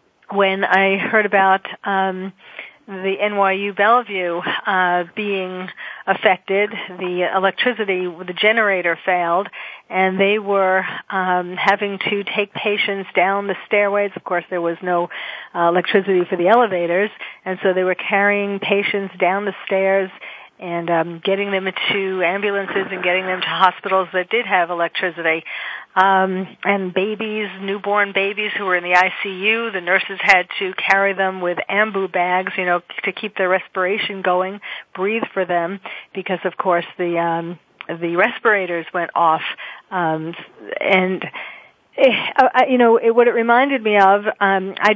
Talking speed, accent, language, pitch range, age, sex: 145 wpm, American, English, 180-205 Hz, 40-59, female